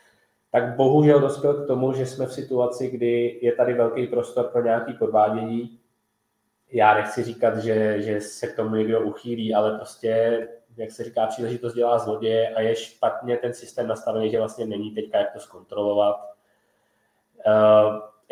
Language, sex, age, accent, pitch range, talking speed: Czech, male, 20-39, native, 110-130 Hz, 160 wpm